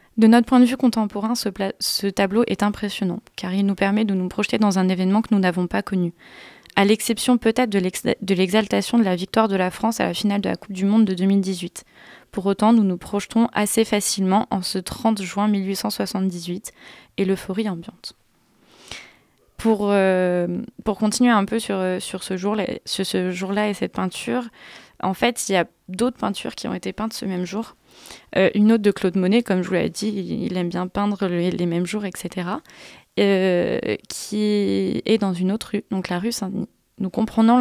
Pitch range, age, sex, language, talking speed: 185-215 Hz, 20-39, female, French, 200 wpm